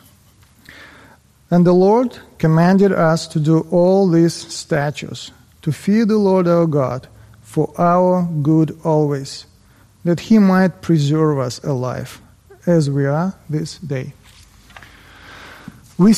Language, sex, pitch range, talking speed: English, male, 150-185 Hz, 120 wpm